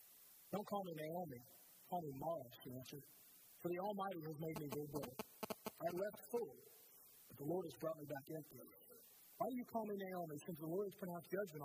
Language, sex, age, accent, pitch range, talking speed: English, male, 50-69, American, 160-210 Hz, 210 wpm